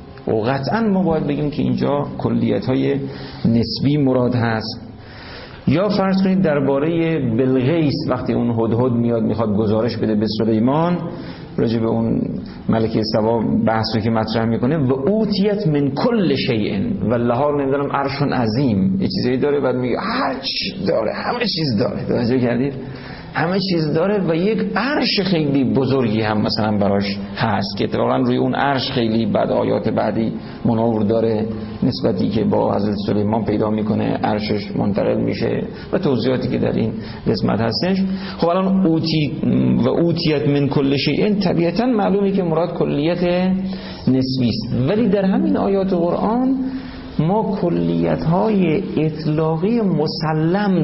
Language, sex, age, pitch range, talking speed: Persian, male, 50-69, 115-170 Hz, 145 wpm